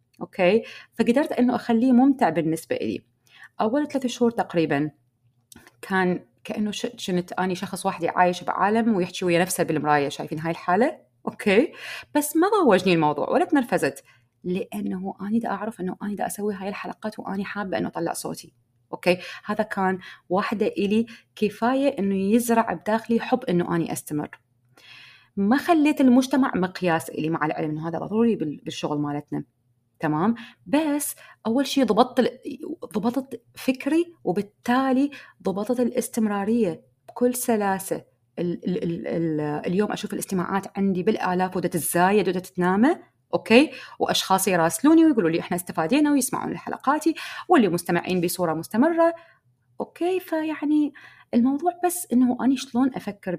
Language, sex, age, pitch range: Arabic, female, 30-49, 175-250 Hz